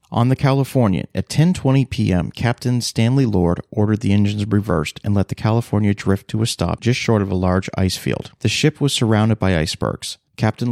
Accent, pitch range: American, 95-120 Hz